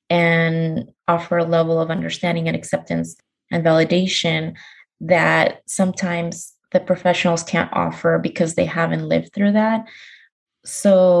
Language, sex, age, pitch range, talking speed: English, female, 20-39, 160-180 Hz, 125 wpm